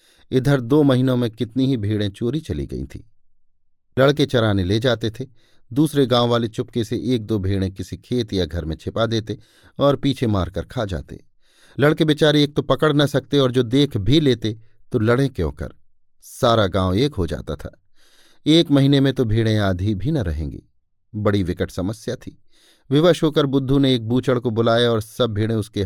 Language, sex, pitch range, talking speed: Hindi, male, 95-130 Hz, 195 wpm